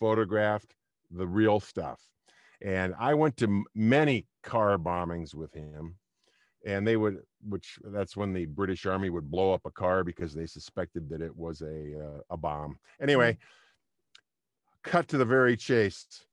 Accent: American